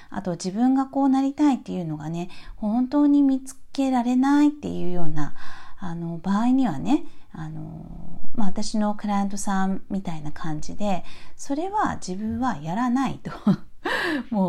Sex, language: female, Japanese